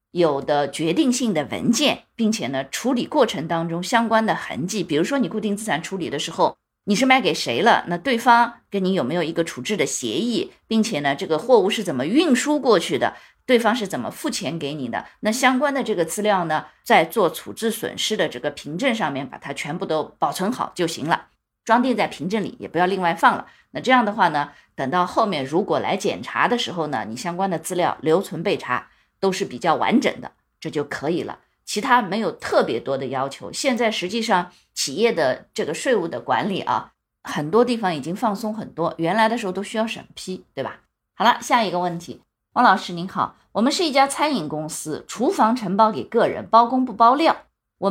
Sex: female